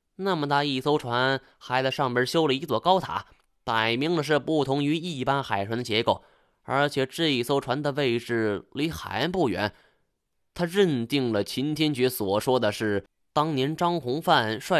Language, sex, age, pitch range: Chinese, male, 20-39, 110-150 Hz